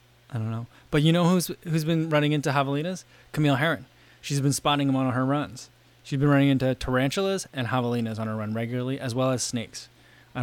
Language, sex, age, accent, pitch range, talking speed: English, male, 20-39, American, 110-135 Hz, 215 wpm